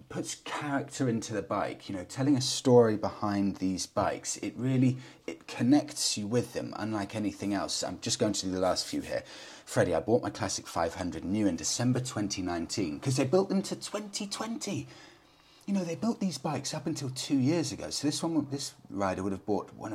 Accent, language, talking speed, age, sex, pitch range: British, English, 205 wpm, 30-49, male, 90-135 Hz